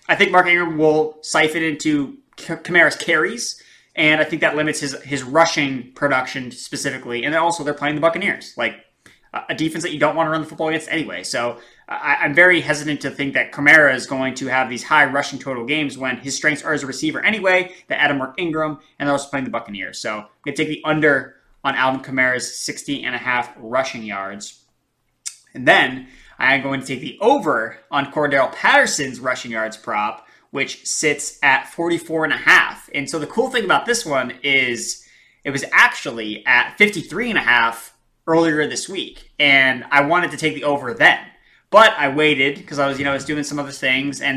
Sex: male